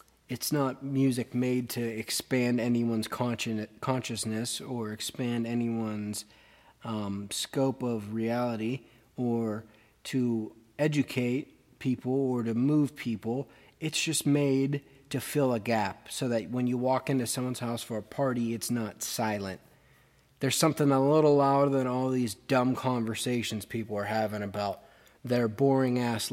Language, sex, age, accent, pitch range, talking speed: English, male, 30-49, American, 110-145 Hz, 135 wpm